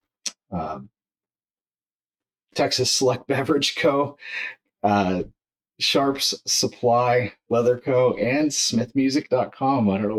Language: English